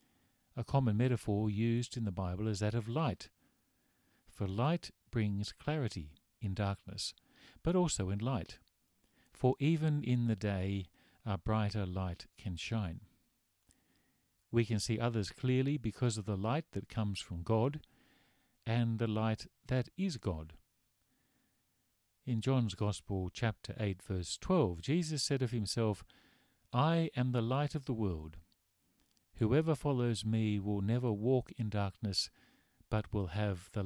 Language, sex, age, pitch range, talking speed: English, male, 50-69, 100-125 Hz, 140 wpm